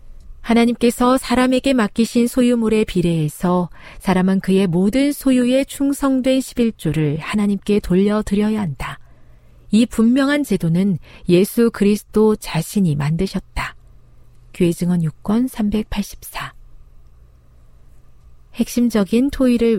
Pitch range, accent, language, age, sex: 160-230 Hz, native, Korean, 40-59, female